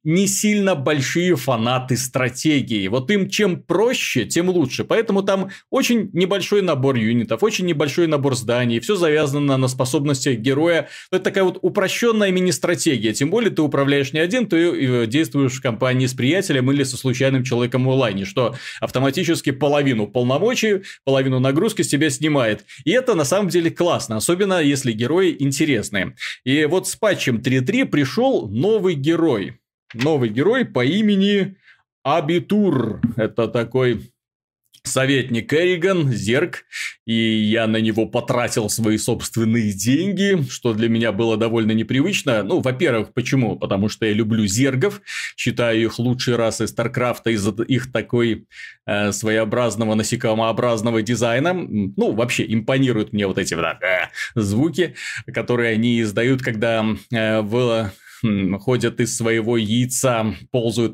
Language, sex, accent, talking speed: Russian, male, native, 140 wpm